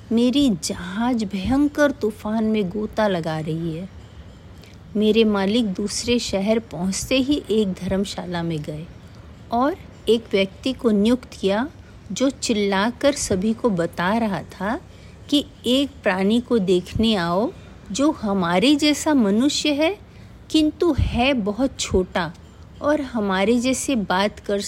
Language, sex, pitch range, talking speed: Hindi, female, 175-240 Hz, 125 wpm